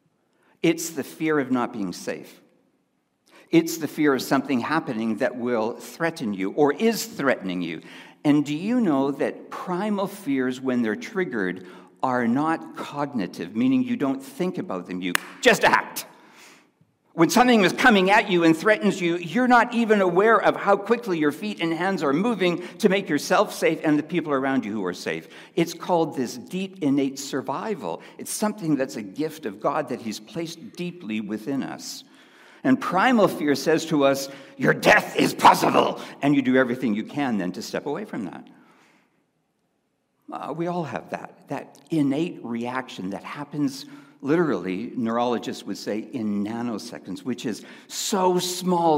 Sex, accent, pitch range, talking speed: male, American, 135-195 Hz, 170 wpm